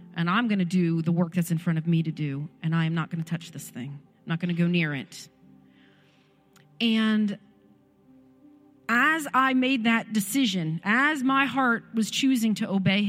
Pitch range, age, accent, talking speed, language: 180-255 Hz, 40-59, American, 195 wpm, English